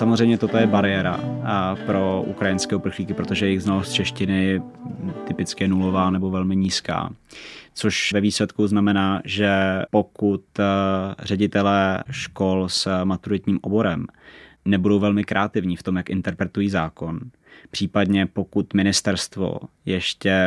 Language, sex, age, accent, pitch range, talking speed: Czech, male, 20-39, native, 95-105 Hz, 115 wpm